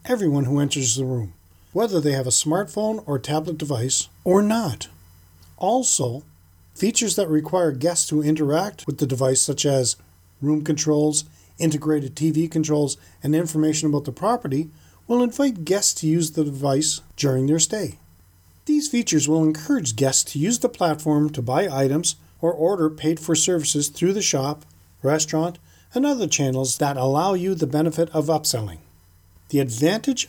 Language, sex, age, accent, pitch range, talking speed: English, male, 40-59, American, 125-165 Hz, 155 wpm